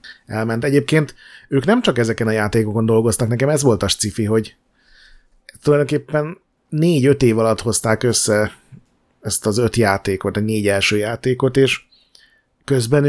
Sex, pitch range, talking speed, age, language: male, 105-130 Hz, 140 wpm, 30-49, Hungarian